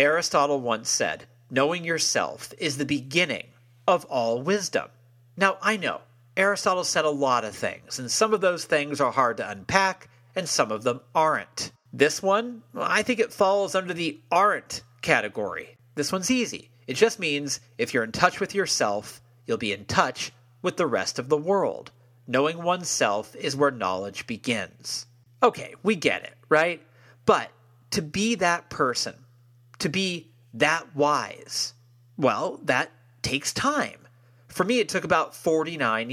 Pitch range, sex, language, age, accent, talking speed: 120-175 Hz, male, English, 40-59, American, 160 wpm